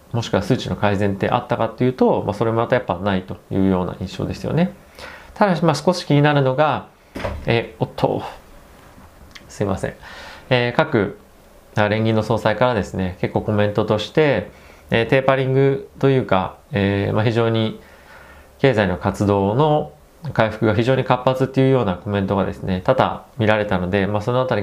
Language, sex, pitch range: Japanese, male, 95-125 Hz